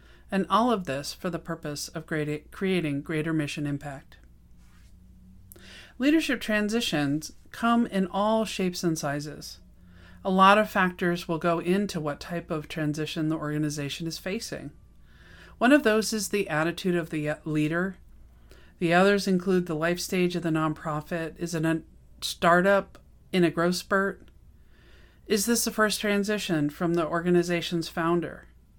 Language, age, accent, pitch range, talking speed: English, 40-59, American, 150-195 Hz, 145 wpm